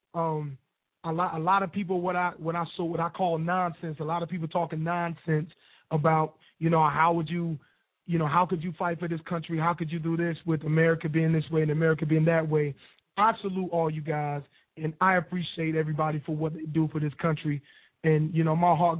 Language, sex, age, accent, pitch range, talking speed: English, male, 30-49, American, 155-170 Hz, 235 wpm